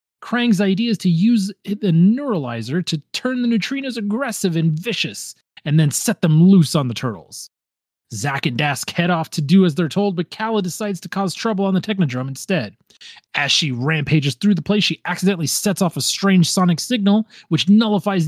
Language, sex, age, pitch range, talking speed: English, male, 30-49, 155-205 Hz, 190 wpm